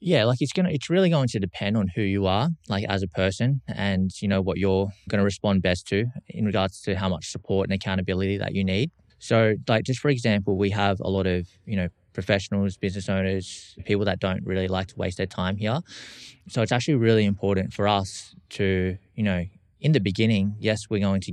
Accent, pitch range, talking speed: Australian, 95-115 Hz, 220 wpm